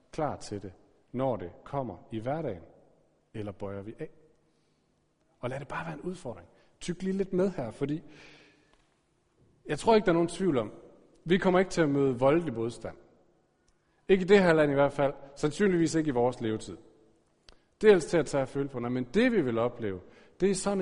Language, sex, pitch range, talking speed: Danish, male, 125-175 Hz, 200 wpm